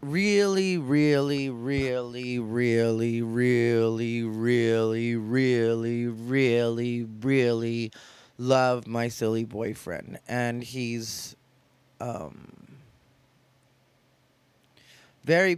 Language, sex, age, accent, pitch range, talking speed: English, male, 30-49, American, 115-140 Hz, 65 wpm